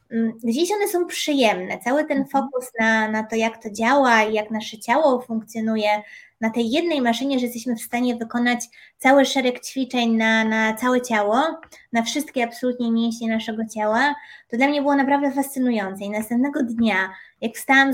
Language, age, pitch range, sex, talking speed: Polish, 20-39, 220-270 Hz, female, 170 wpm